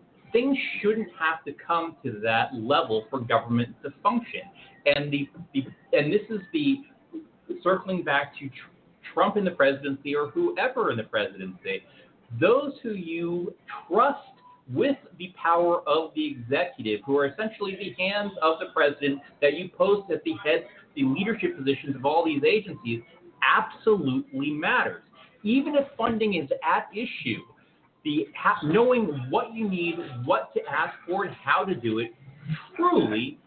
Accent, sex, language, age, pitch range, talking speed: American, male, English, 40-59, 140-220 Hz, 150 wpm